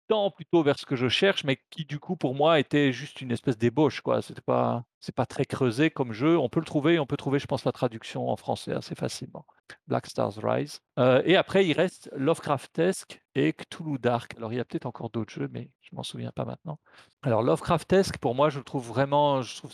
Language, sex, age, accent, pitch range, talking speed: French, male, 40-59, French, 120-145 Hz, 235 wpm